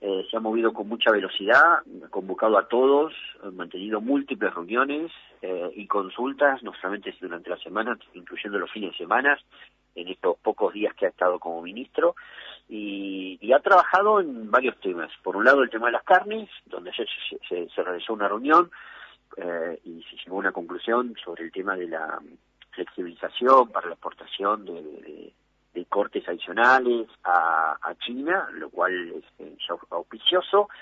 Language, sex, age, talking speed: Spanish, male, 40-59, 175 wpm